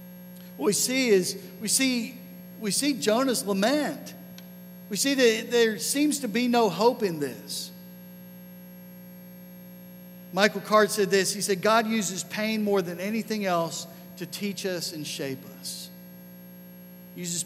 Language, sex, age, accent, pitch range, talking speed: English, male, 50-69, American, 170-200 Hz, 145 wpm